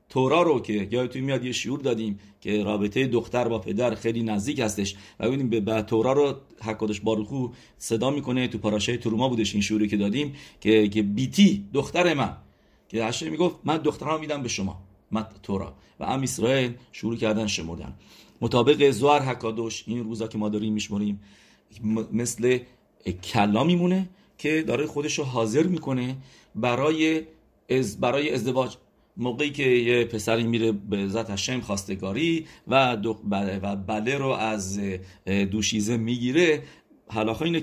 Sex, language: male, English